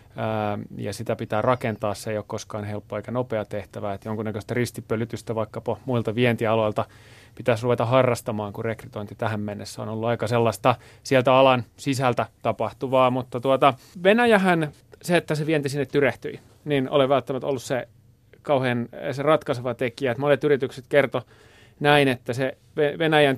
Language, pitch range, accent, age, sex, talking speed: Finnish, 115-135 Hz, native, 30-49, male, 150 wpm